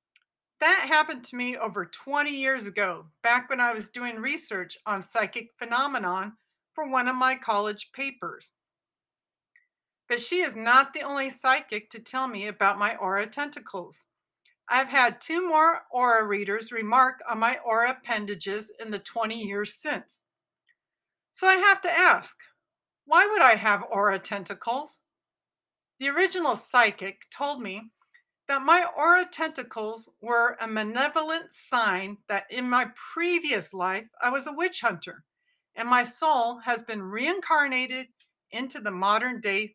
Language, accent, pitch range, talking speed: English, American, 215-305 Hz, 145 wpm